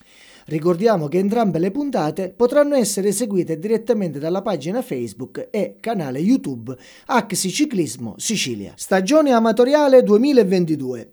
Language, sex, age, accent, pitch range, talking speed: Italian, male, 40-59, native, 160-225 Hz, 115 wpm